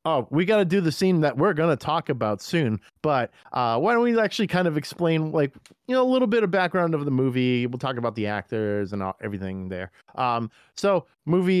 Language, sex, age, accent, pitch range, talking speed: English, male, 30-49, American, 115-175 Hz, 235 wpm